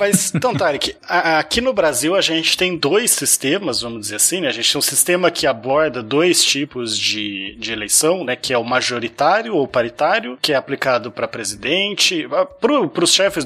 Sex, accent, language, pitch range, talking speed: male, Brazilian, Portuguese, 130-175 Hz, 185 wpm